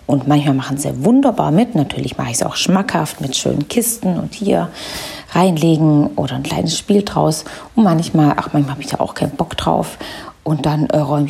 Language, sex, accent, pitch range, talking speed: English, female, German, 145-195 Hz, 200 wpm